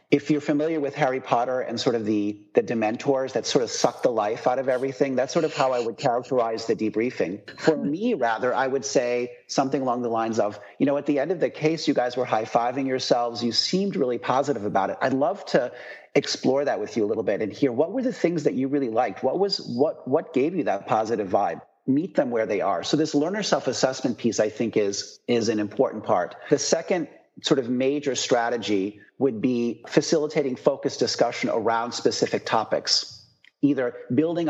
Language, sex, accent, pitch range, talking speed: English, male, American, 115-145 Hz, 210 wpm